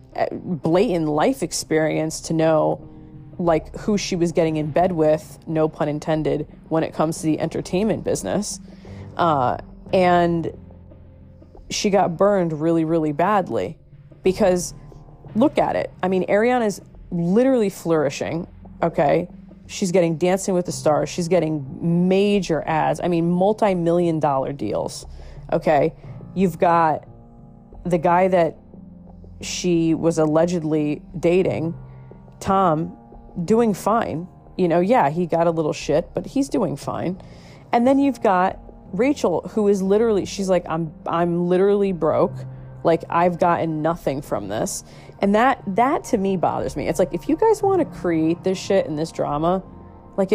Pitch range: 155-190 Hz